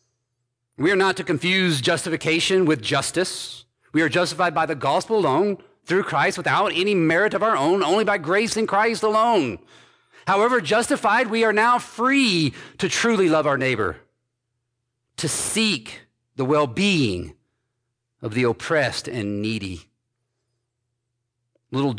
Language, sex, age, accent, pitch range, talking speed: English, male, 40-59, American, 120-170 Hz, 135 wpm